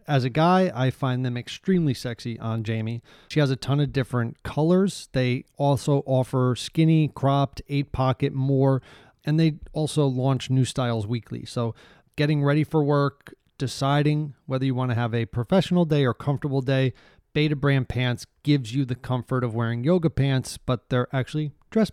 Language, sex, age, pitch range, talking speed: English, male, 30-49, 120-140 Hz, 170 wpm